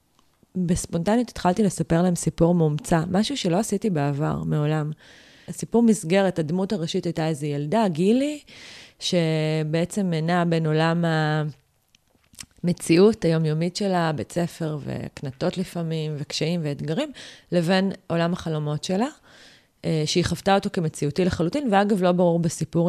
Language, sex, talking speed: Hebrew, female, 120 wpm